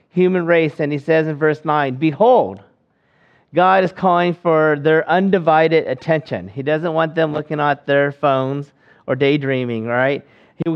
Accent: American